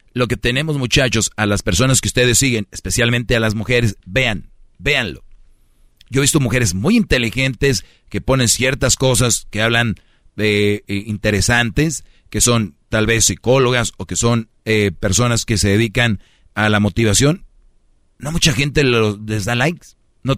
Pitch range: 105-130 Hz